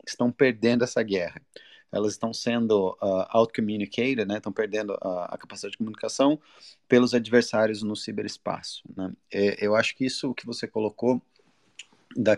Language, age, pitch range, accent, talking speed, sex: Portuguese, 30-49, 100-120 Hz, Brazilian, 155 wpm, male